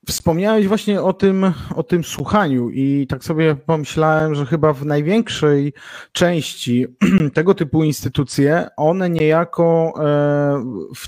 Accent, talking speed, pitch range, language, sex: native, 115 wpm, 150-180 Hz, Polish, male